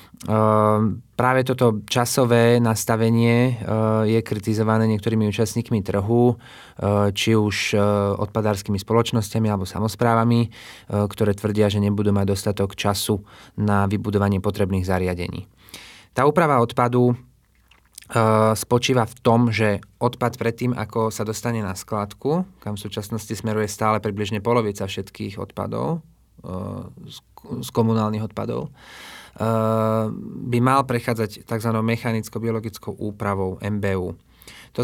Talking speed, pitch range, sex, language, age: 120 wpm, 105-120 Hz, male, Slovak, 20-39